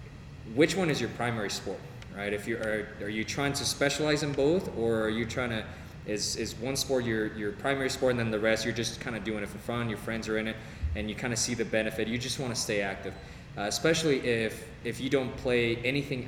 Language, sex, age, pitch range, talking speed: English, male, 20-39, 105-130 Hz, 250 wpm